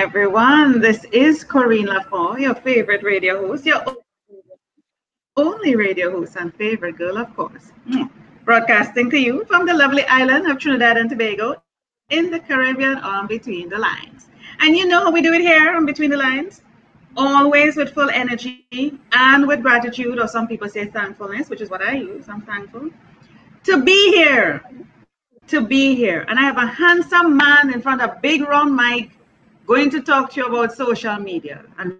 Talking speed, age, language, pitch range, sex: 175 wpm, 30-49, English, 220-280 Hz, female